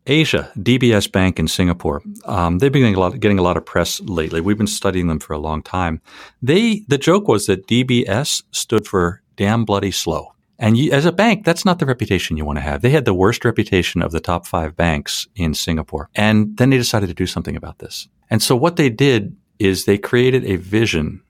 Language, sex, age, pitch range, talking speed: English, male, 50-69, 90-125 Hz, 225 wpm